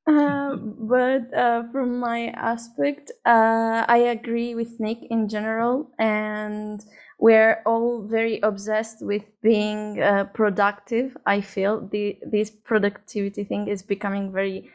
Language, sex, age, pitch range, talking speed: English, female, 20-39, 205-230 Hz, 130 wpm